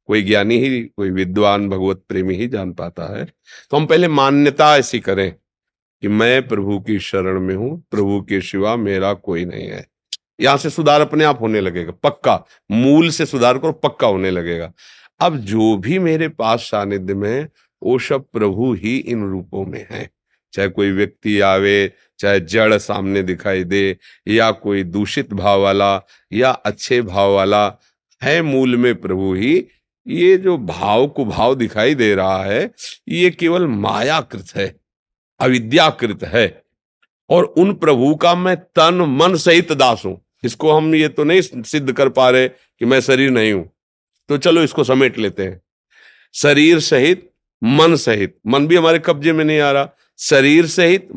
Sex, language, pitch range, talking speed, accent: male, Hindi, 100-150 Hz, 170 wpm, native